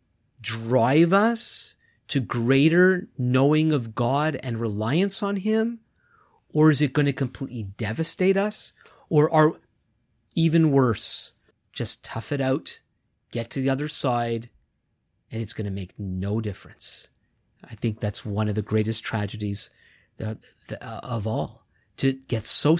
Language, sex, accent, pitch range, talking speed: English, male, American, 110-150 Hz, 135 wpm